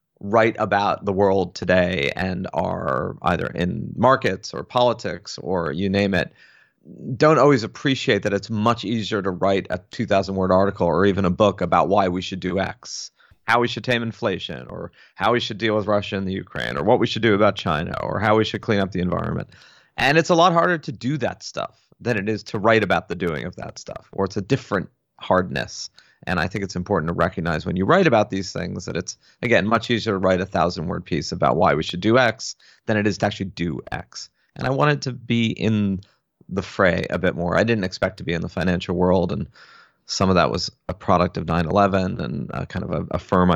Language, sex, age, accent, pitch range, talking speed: English, male, 30-49, American, 90-110 Hz, 230 wpm